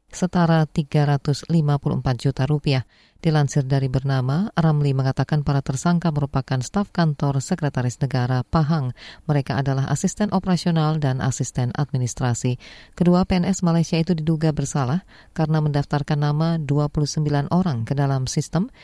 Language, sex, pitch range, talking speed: Indonesian, female, 135-165 Hz, 120 wpm